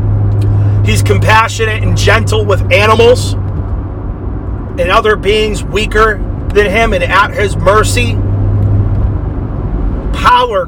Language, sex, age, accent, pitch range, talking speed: English, male, 30-49, American, 100-110 Hz, 95 wpm